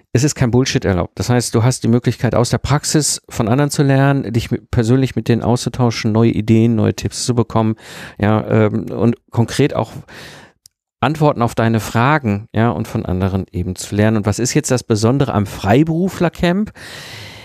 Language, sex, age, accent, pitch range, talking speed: German, male, 50-69, German, 105-130 Hz, 180 wpm